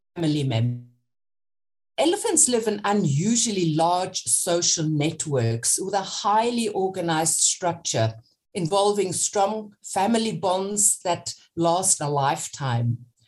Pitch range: 155-205 Hz